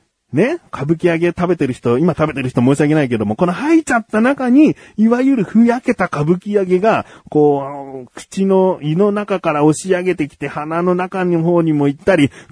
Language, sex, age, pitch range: Japanese, male, 40-59, 140-220 Hz